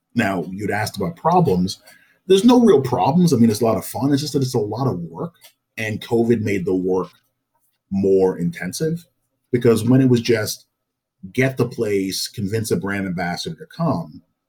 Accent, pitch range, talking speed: American, 95-130 Hz, 185 wpm